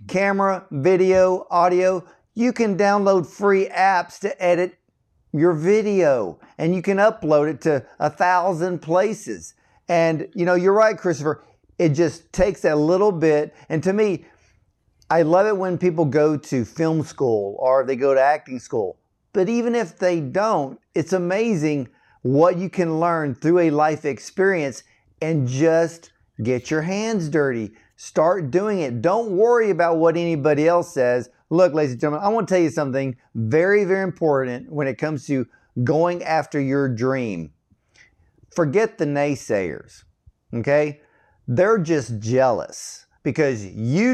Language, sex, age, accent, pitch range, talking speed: English, male, 50-69, American, 140-185 Hz, 150 wpm